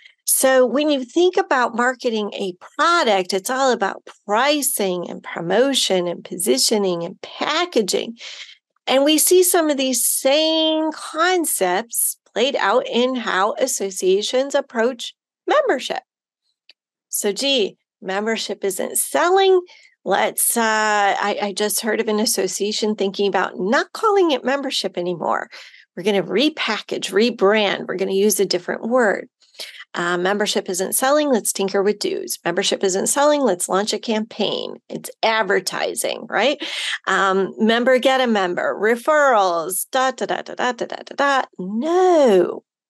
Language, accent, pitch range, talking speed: English, American, 195-280 Hz, 135 wpm